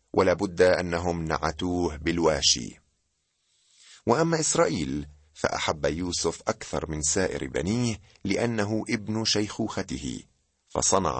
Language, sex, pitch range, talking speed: Arabic, male, 80-110 Hz, 85 wpm